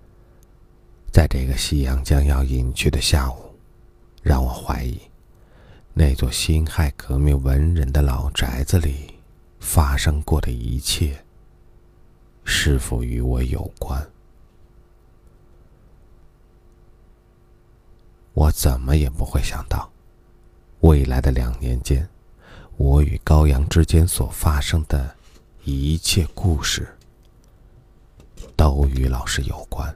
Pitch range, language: 70-90 Hz, Chinese